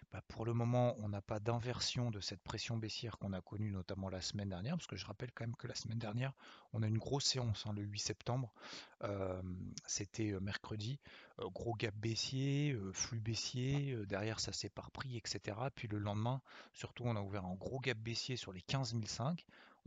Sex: male